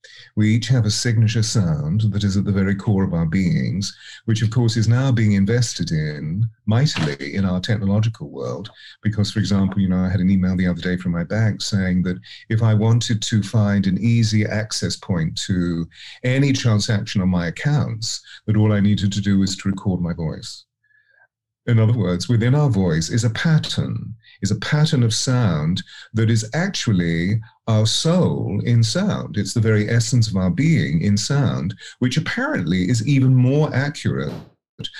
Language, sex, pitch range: English, male, 105-145 Hz